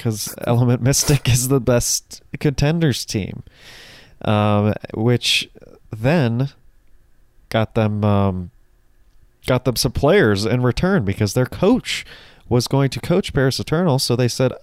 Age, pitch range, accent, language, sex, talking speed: 20-39, 105-125 Hz, American, English, male, 130 wpm